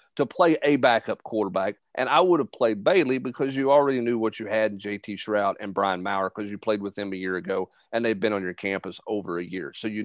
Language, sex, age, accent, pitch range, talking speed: English, male, 40-59, American, 100-115 Hz, 265 wpm